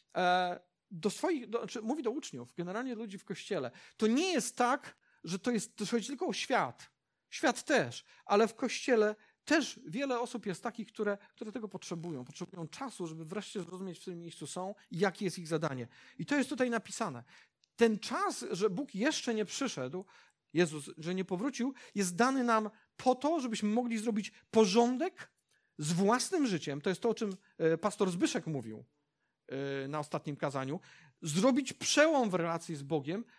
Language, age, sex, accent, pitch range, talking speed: Polish, 40-59, male, native, 170-245 Hz, 175 wpm